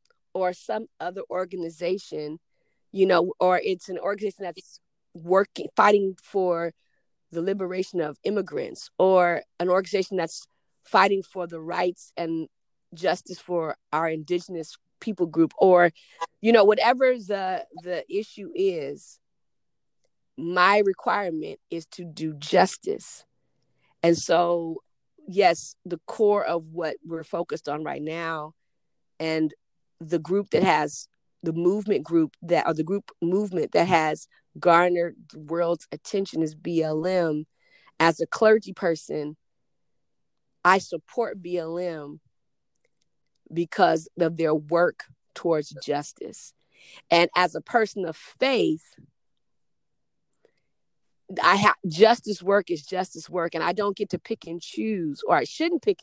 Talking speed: 125 wpm